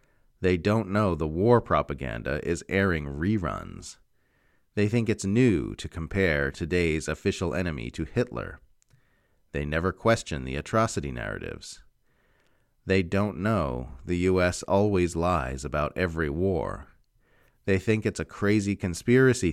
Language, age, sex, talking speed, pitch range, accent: English, 40-59, male, 130 wpm, 80-110 Hz, American